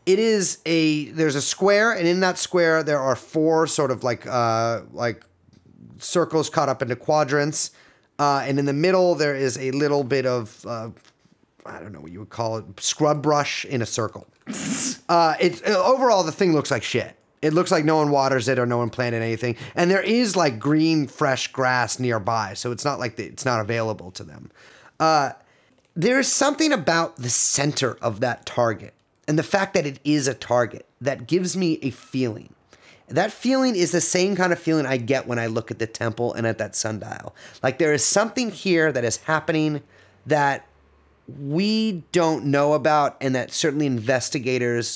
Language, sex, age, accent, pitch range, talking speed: English, male, 30-49, American, 120-165 Hz, 195 wpm